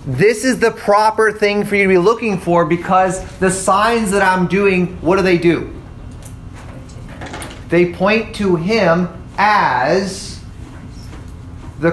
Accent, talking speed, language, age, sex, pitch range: American, 135 wpm, English, 30-49, male, 140-205 Hz